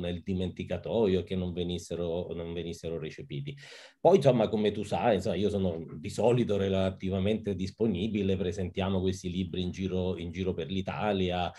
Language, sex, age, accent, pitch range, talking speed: Italian, male, 30-49, native, 90-100 Hz, 145 wpm